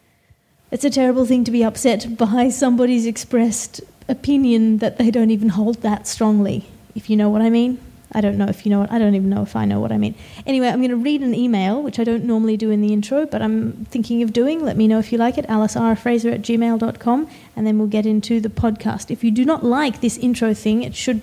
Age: 30-49